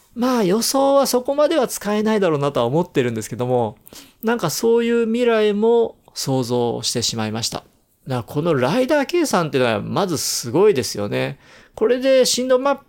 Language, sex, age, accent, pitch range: Japanese, male, 40-59, native, 125-185 Hz